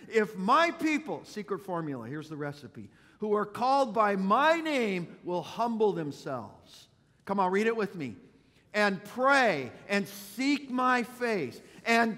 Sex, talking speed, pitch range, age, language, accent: male, 150 wpm, 150-225 Hz, 50-69, English, American